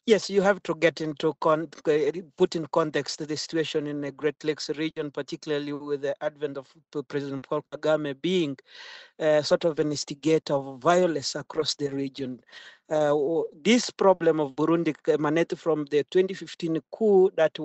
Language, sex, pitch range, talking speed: English, male, 150-170 Hz, 155 wpm